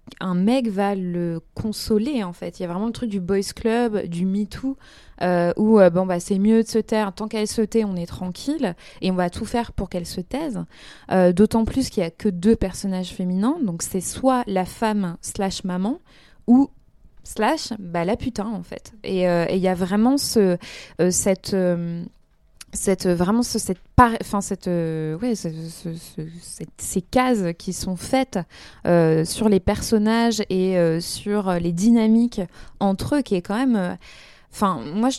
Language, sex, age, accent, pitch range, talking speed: French, female, 20-39, French, 180-225 Hz, 170 wpm